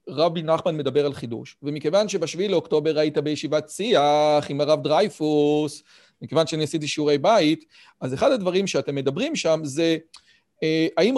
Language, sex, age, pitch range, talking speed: Hebrew, male, 40-59, 155-220 Hz, 145 wpm